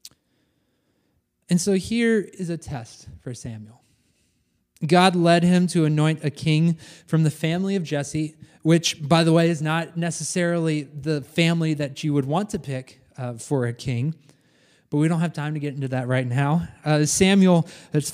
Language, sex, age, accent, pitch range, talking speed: English, male, 20-39, American, 140-175 Hz, 175 wpm